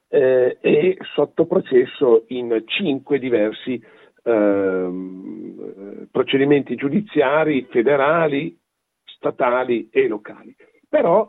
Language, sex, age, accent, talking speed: Italian, male, 50-69, native, 75 wpm